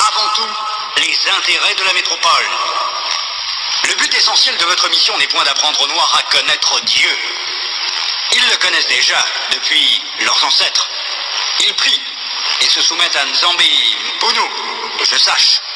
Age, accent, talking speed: 50-69, French, 145 wpm